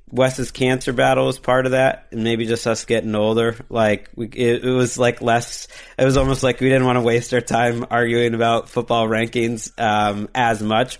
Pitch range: 105-125 Hz